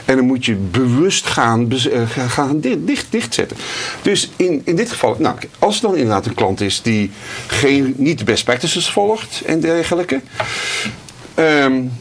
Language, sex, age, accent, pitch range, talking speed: Dutch, male, 50-69, Dutch, 110-150 Hz, 170 wpm